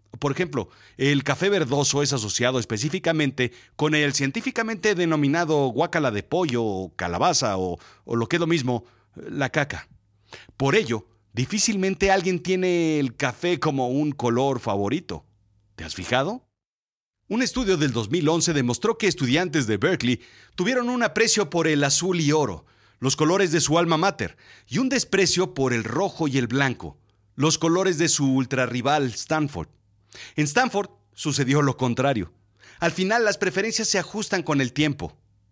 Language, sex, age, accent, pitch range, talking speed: Spanish, male, 40-59, Mexican, 110-170 Hz, 155 wpm